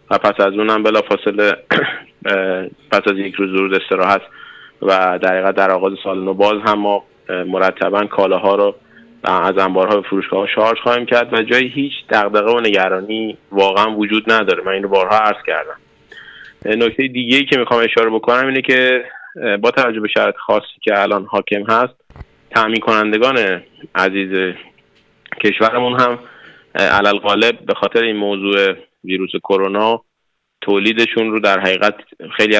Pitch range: 95-115 Hz